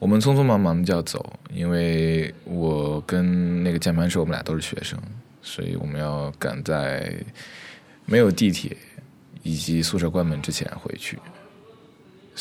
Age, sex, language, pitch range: 20-39, male, Chinese, 80-90 Hz